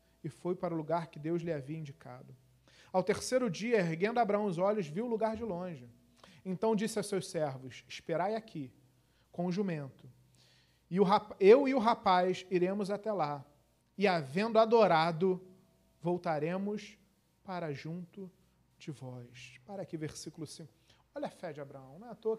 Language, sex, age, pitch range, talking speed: Portuguese, male, 40-59, 150-210 Hz, 170 wpm